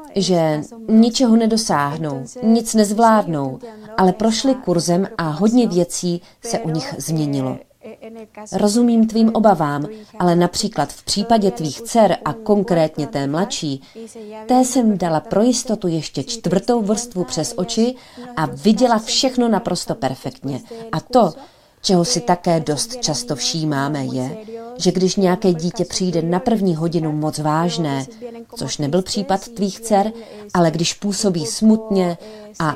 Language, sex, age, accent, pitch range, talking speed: Czech, female, 30-49, native, 155-225 Hz, 130 wpm